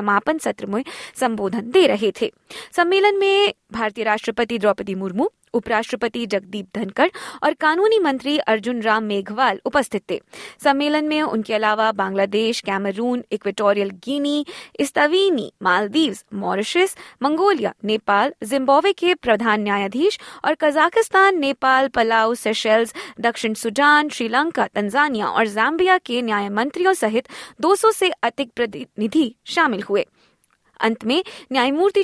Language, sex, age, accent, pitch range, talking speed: Hindi, female, 20-39, native, 220-325 Hz, 120 wpm